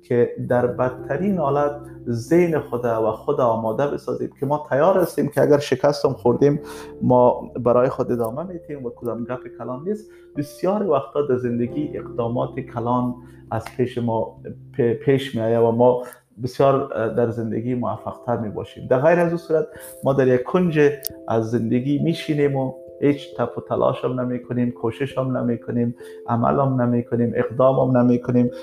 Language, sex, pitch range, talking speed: Persian, male, 120-145 Hz, 150 wpm